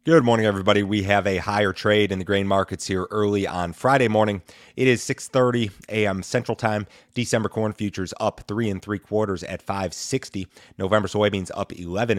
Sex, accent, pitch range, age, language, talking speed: male, American, 100-115 Hz, 30-49, English, 185 wpm